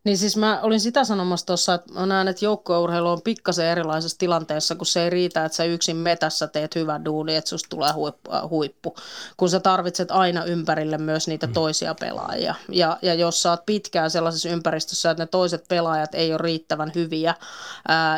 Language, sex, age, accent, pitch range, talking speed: Finnish, female, 30-49, native, 160-180 Hz, 190 wpm